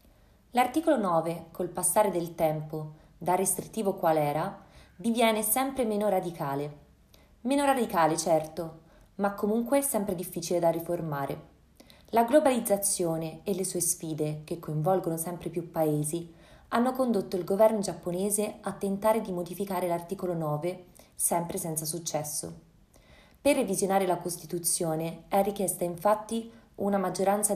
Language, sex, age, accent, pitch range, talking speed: Italian, female, 20-39, native, 165-210 Hz, 125 wpm